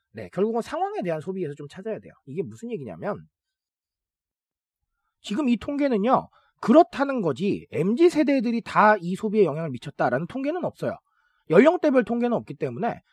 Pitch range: 200-305 Hz